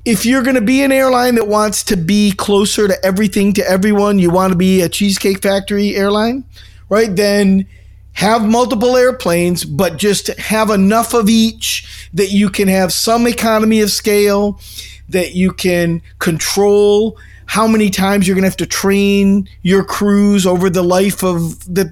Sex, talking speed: male, 170 wpm